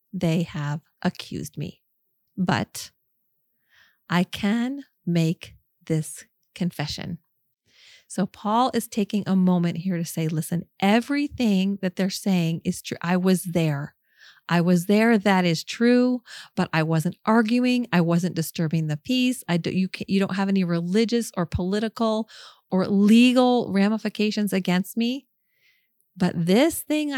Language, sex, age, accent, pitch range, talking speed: English, female, 30-49, American, 170-220 Hz, 130 wpm